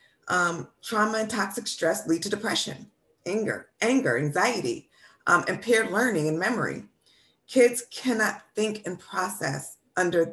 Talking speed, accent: 130 wpm, American